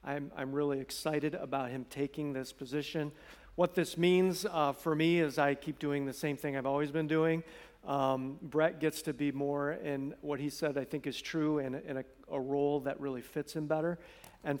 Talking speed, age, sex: 205 wpm, 50-69, male